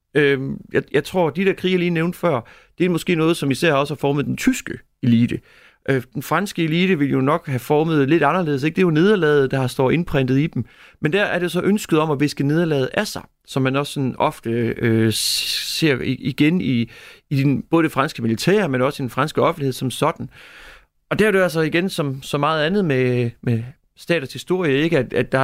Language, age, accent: Danish, 30-49, native